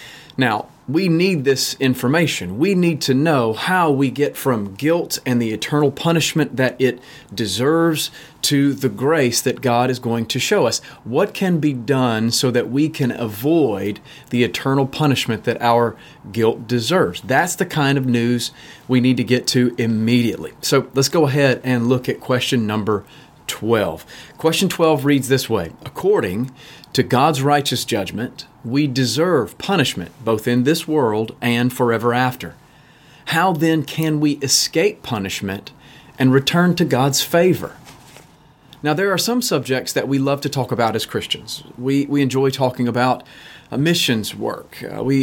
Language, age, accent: English, 40-59, American